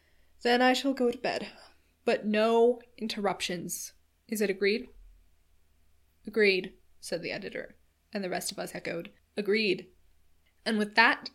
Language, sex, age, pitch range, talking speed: English, female, 10-29, 185-230 Hz, 135 wpm